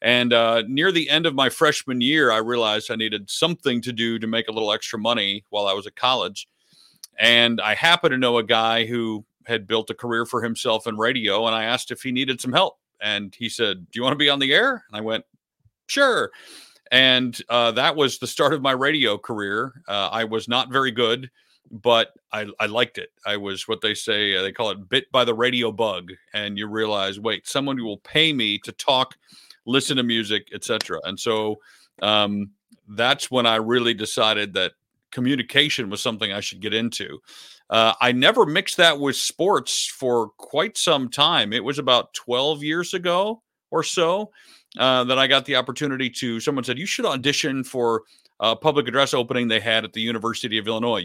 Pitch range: 110-135 Hz